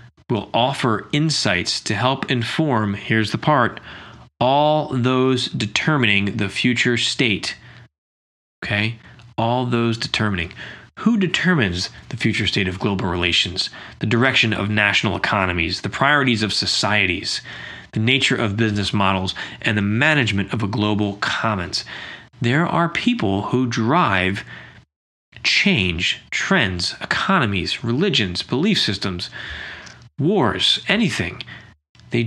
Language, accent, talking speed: English, American, 115 wpm